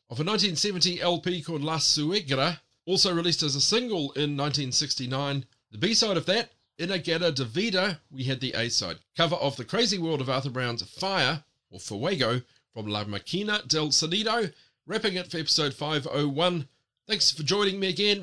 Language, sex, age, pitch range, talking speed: English, male, 40-59, 130-180 Hz, 175 wpm